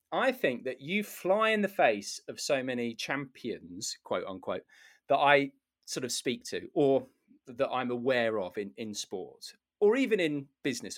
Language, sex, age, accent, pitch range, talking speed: English, male, 30-49, British, 125-190 Hz, 175 wpm